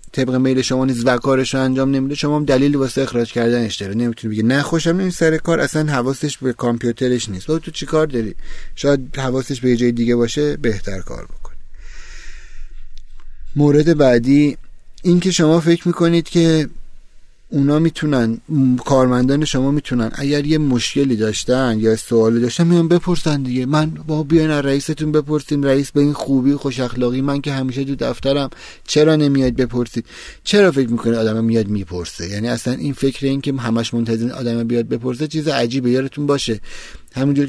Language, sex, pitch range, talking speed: Persian, male, 120-150 Hz, 165 wpm